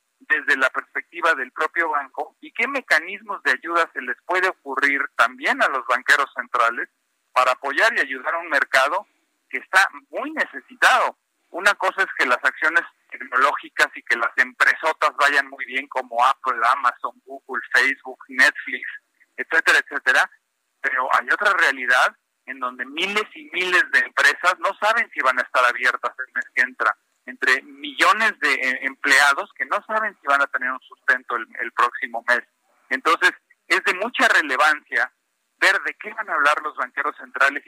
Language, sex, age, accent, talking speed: Spanish, male, 50-69, Mexican, 170 wpm